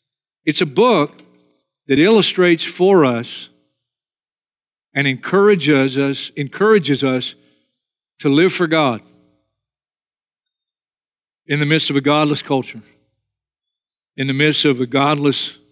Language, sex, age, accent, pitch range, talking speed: English, male, 50-69, American, 135-180 Hz, 110 wpm